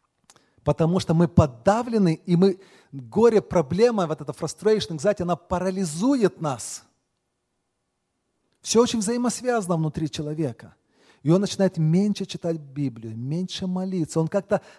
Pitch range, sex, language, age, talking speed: 130-185 Hz, male, Russian, 40-59, 120 wpm